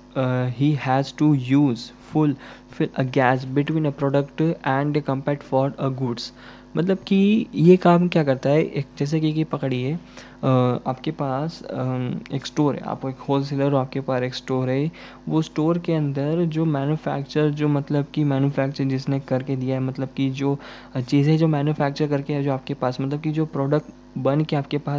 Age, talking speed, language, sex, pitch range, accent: 20-39, 185 wpm, Hindi, male, 135-155 Hz, native